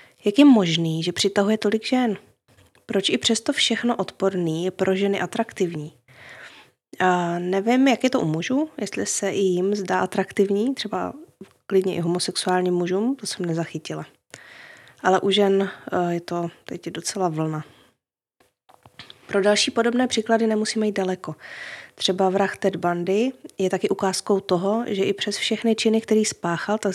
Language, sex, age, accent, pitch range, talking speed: Czech, female, 20-39, native, 180-215 Hz, 150 wpm